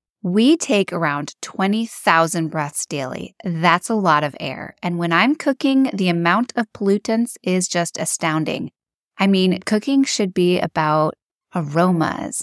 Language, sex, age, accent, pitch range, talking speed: English, female, 20-39, American, 170-205 Hz, 140 wpm